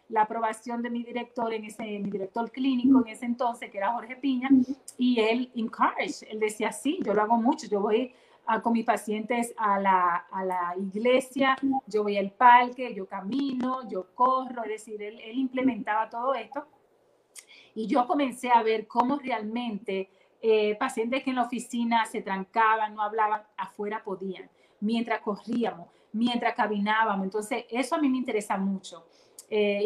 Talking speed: 170 wpm